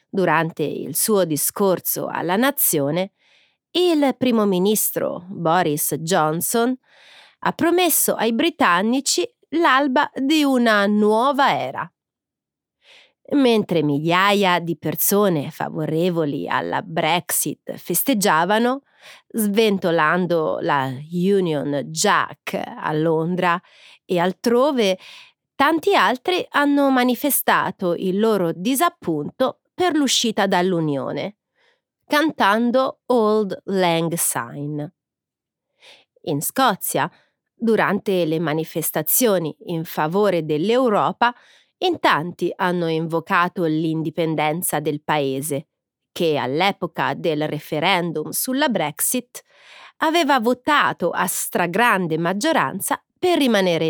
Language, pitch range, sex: Italian, 160-250 Hz, female